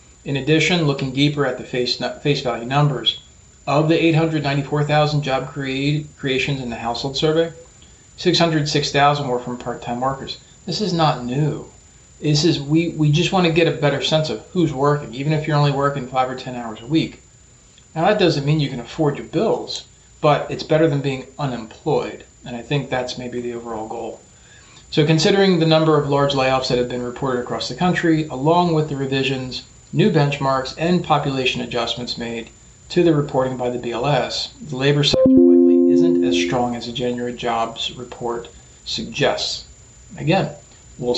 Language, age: English, 40-59